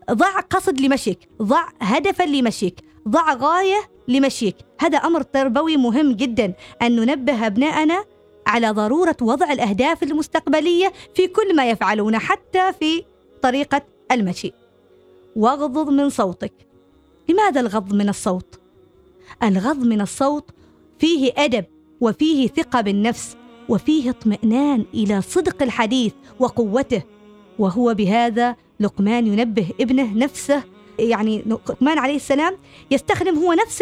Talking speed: 115 wpm